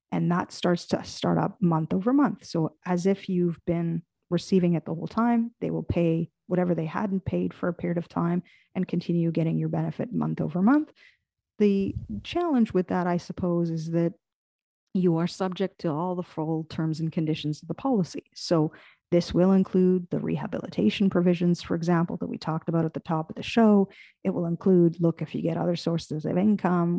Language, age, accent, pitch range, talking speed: English, 40-59, American, 165-195 Hz, 200 wpm